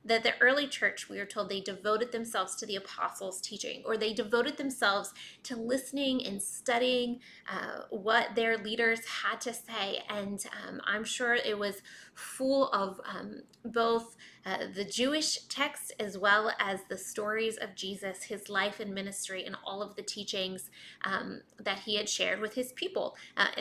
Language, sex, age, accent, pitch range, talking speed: English, female, 20-39, American, 195-235 Hz, 175 wpm